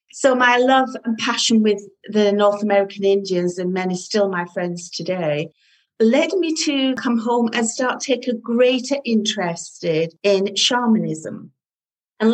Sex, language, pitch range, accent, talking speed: female, English, 185-225 Hz, British, 150 wpm